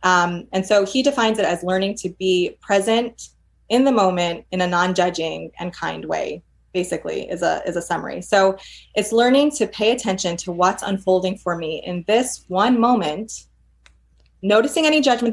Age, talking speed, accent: 20-39, 170 wpm, American